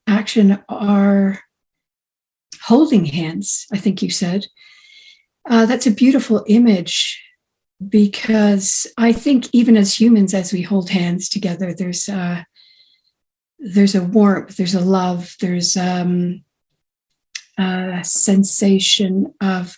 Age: 50-69